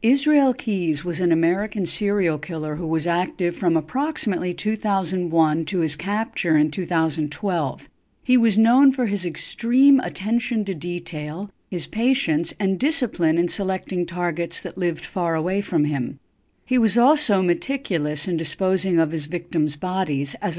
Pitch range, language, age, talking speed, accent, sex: 165-220 Hz, English, 50-69, 150 wpm, American, female